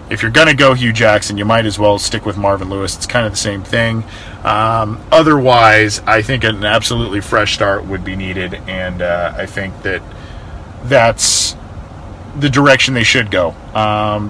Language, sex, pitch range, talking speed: English, male, 100-120 Hz, 185 wpm